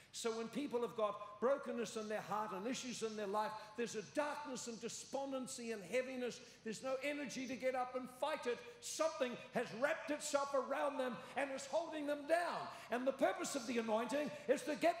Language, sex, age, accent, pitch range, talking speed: English, male, 60-79, American, 220-290 Hz, 200 wpm